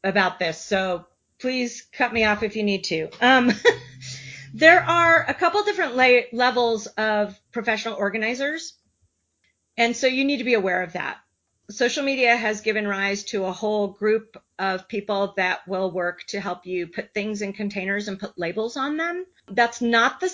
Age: 40-59